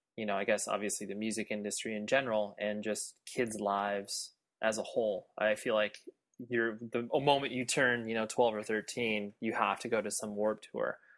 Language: English